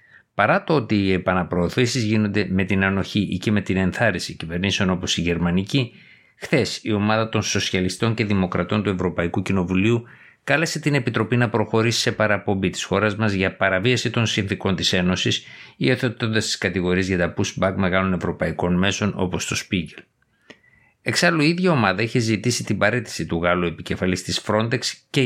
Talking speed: 165 wpm